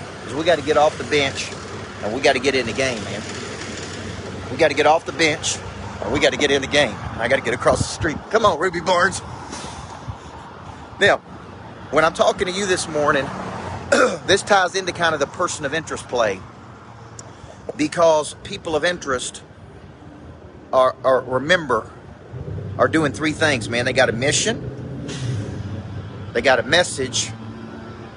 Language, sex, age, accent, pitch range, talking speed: English, male, 40-59, American, 115-150 Hz, 170 wpm